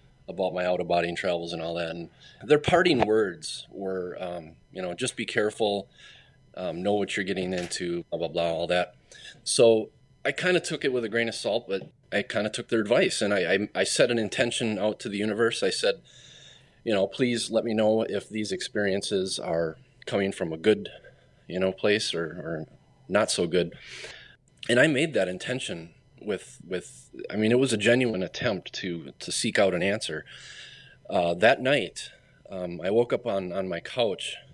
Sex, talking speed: male, 200 wpm